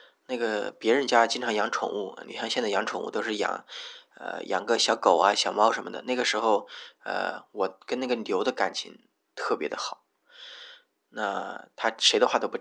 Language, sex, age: Chinese, male, 20-39